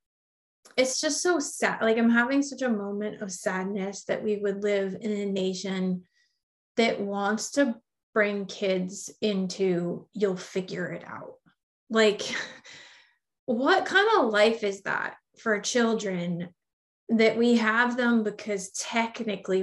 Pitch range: 195-230 Hz